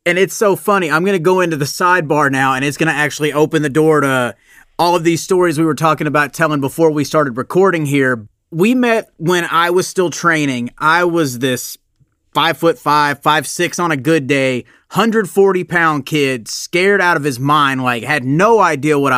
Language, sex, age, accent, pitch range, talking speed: English, male, 30-49, American, 140-180 Hz, 205 wpm